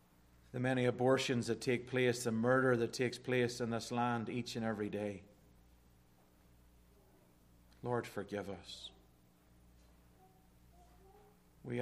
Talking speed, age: 110 wpm, 40-59